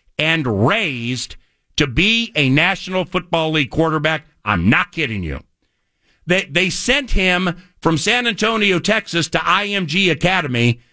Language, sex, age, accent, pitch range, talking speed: English, male, 50-69, American, 150-220 Hz, 130 wpm